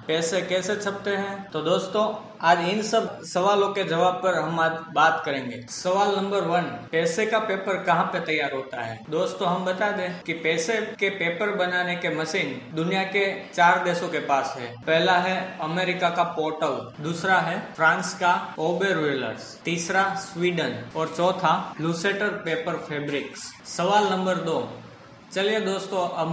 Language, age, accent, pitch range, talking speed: Hindi, 20-39, native, 160-190 Hz, 155 wpm